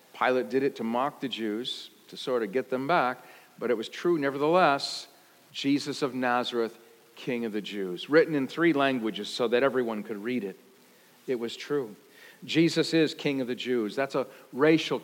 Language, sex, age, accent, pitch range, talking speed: English, male, 50-69, American, 130-170 Hz, 190 wpm